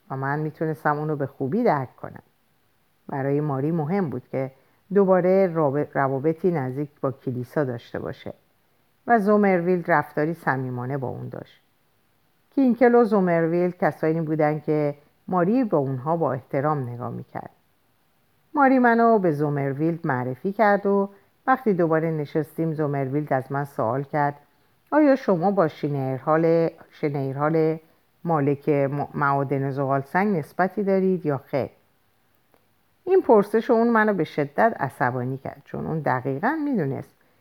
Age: 50-69